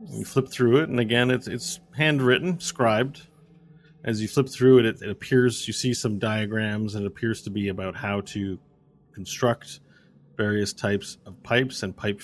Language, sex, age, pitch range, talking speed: English, male, 30-49, 95-120 Hz, 180 wpm